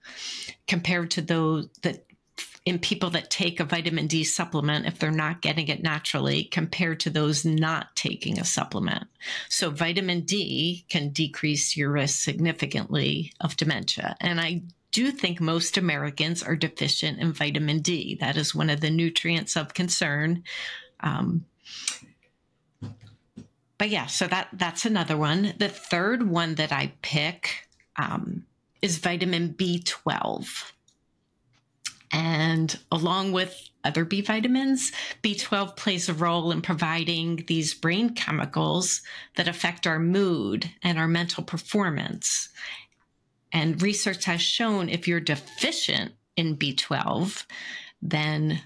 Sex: female